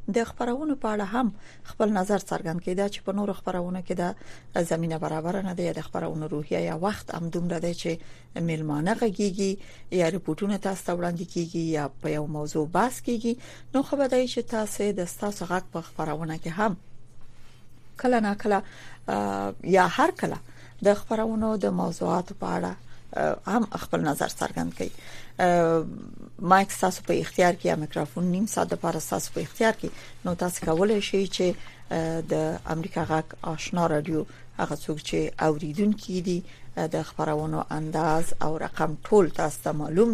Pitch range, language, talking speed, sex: 160-215 Hz, Persian, 160 wpm, female